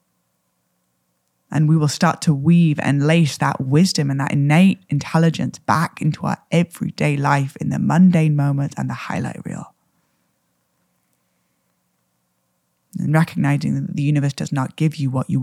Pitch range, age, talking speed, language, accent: 105-160 Hz, 20-39, 150 wpm, English, British